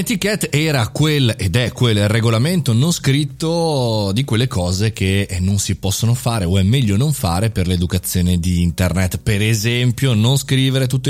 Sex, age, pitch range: male, 30-49, 100-140 Hz